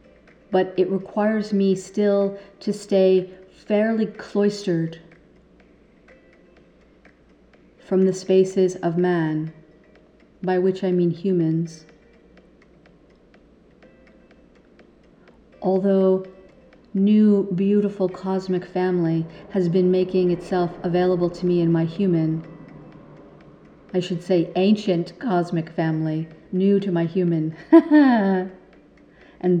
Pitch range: 165-190 Hz